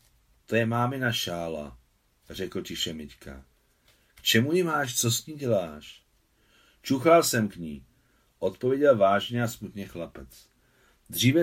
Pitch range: 90-135 Hz